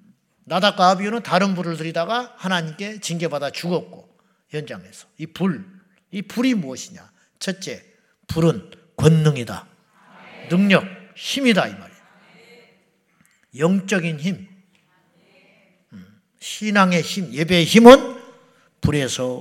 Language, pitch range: Korean, 175-235 Hz